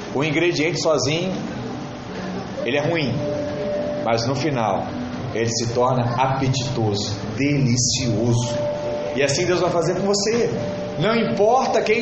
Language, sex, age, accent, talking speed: Portuguese, male, 30-49, Brazilian, 120 wpm